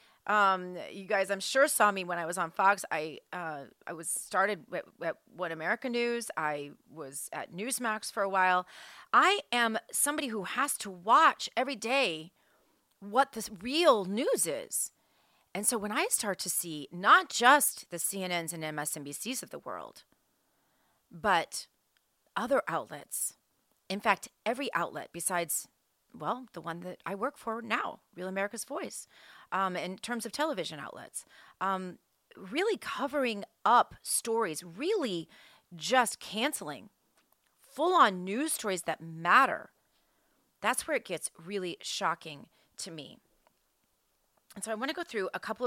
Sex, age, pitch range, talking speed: female, 30-49, 175-245 Hz, 145 wpm